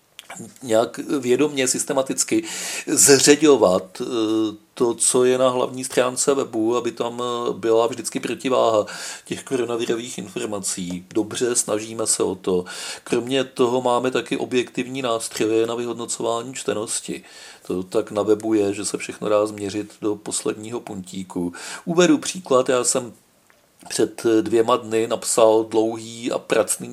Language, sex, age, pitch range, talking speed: Czech, male, 40-59, 110-125 Hz, 125 wpm